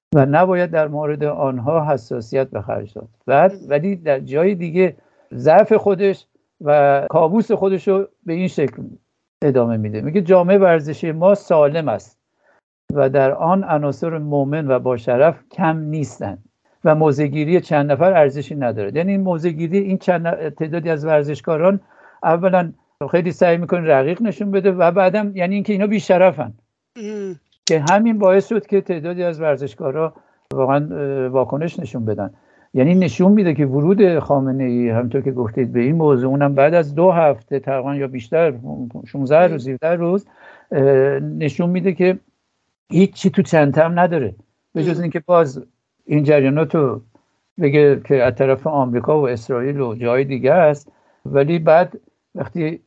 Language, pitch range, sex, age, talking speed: English, 135-185 Hz, male, 60-79, 150 wpm